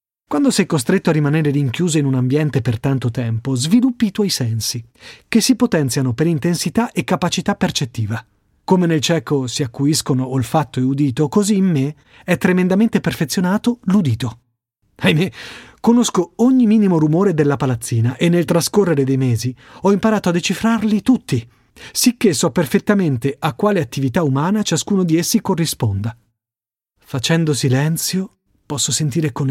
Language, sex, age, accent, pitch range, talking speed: Italian, male, 30-49, native, 130-185 Hz, 145 wpm